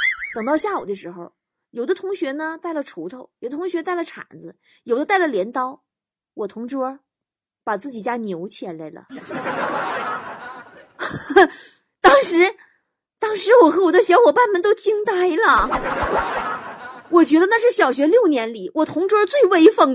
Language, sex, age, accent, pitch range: Chinese, female, 20-39, native, 245-370 Hz